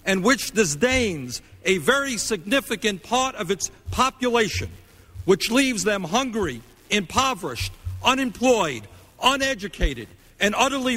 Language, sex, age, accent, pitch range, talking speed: English, male, 50-69, American, 180-250 Hz, 105 wpm